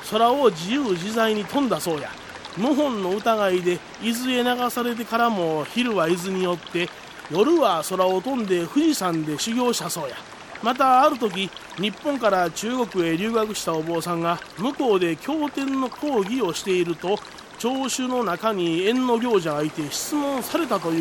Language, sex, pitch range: Japanese, male, 175-245 Hz